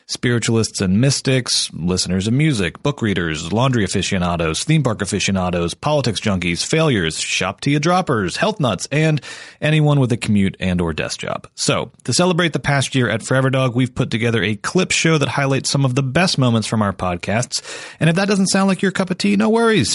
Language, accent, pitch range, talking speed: English, American, 105-145 Hz, 200 wpm